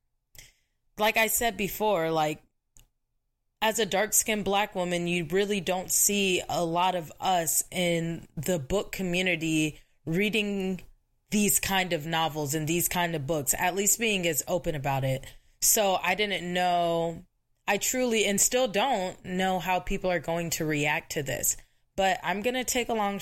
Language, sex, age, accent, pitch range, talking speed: English, female, 20-39, American, 170-225 Hz, 170 wpm